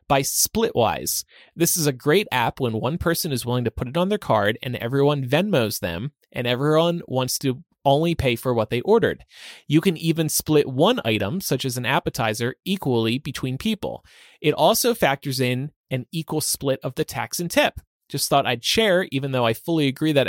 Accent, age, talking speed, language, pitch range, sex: American, 30-49, 200 wpm, English, 125-160 Hz, male